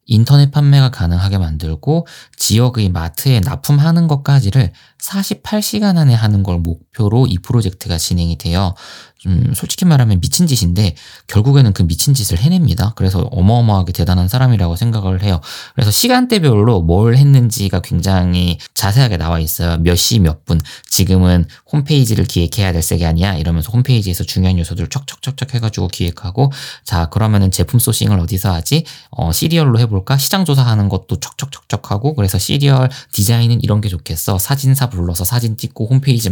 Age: 20-39